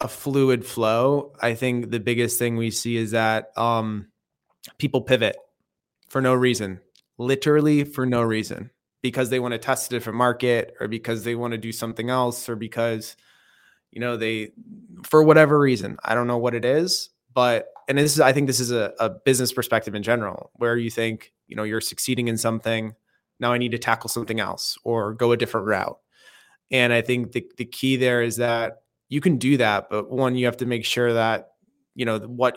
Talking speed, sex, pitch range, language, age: 205 wpm, male, 115-130 Hz, English, 20-39